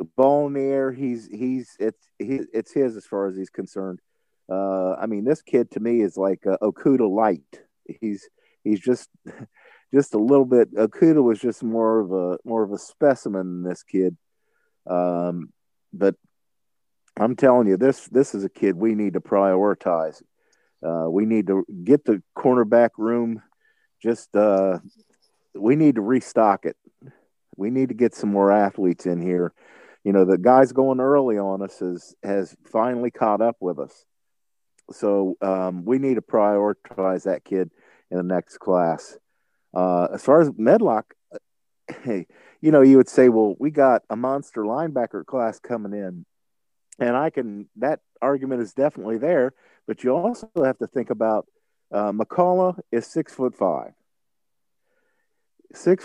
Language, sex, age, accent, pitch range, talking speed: English, male, 50-69, American, 95-135 Hz, 160 wpm